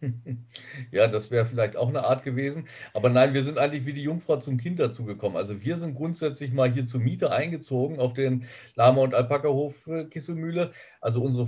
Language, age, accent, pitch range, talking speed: German, 50-69, German, 120-140 Hz, 190 wpm